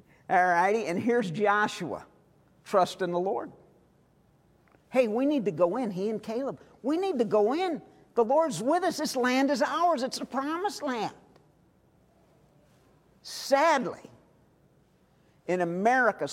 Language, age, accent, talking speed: English, 50-69, American, 135 wpm